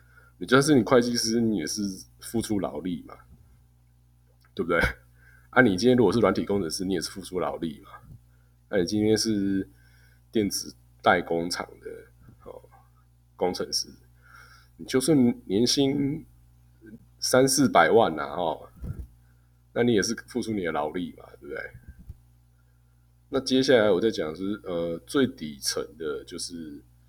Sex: male